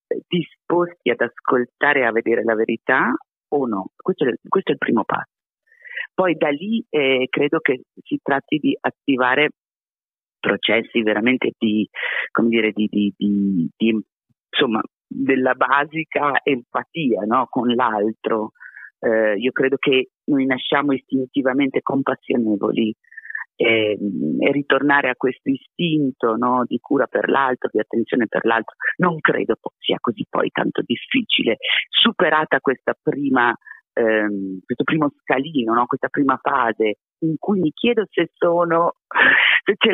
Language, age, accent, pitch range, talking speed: Italian, 40-59, native, 110-160 Hz, 135 wpm